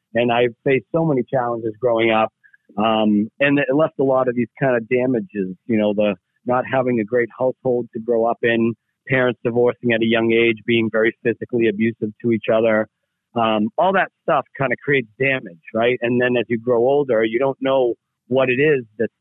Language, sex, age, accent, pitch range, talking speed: English, male, 40-59, American, 110-130 Hz, 205 wpm